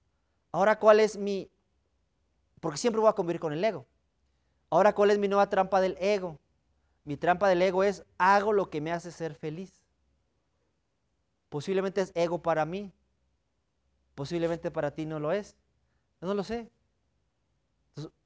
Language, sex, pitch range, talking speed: Spanish, male, 140-205 Hz, 160 wpm